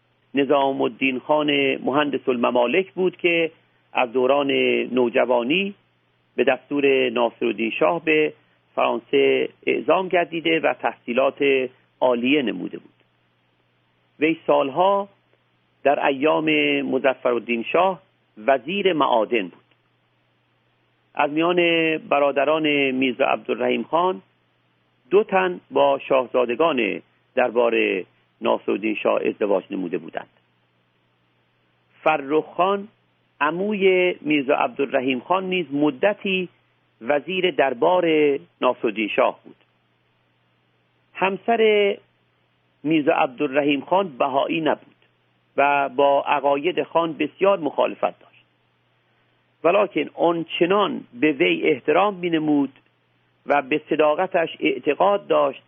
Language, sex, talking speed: Persian, male, 95 wpm